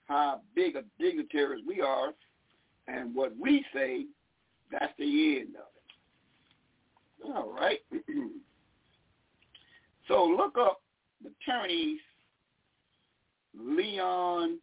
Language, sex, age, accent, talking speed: English, male, 50-69, American, 100 wpm